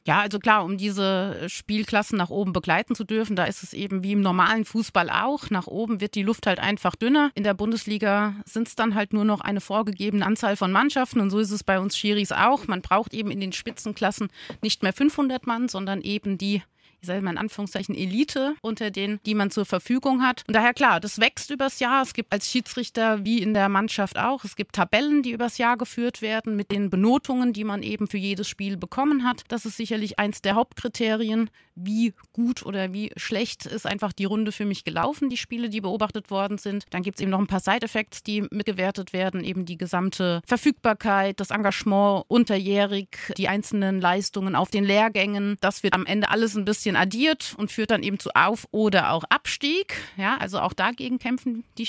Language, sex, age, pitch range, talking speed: German, female, 30-49, 195-235 Hz, 210 wpm